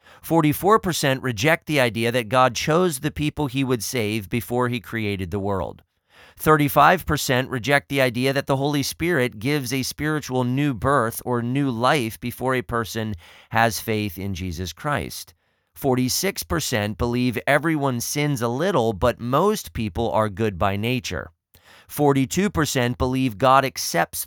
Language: English